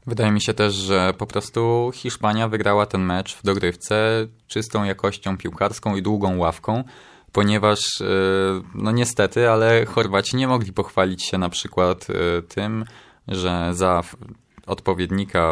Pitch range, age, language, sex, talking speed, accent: 90-110 Hz, 20-39, Polish, male, 130 wpm, native